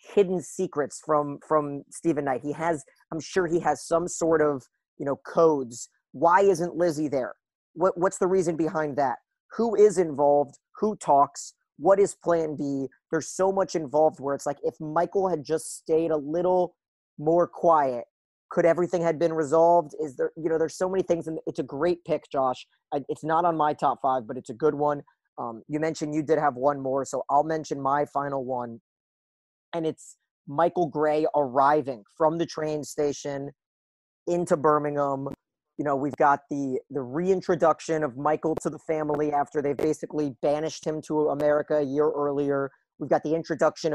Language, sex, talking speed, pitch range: English, male, 185 wpm, 145-165 Hz